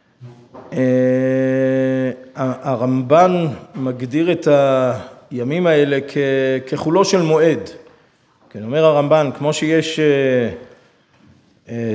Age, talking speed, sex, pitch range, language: 40-59, 85 wpm, male, 125-160 Hz, Hebrew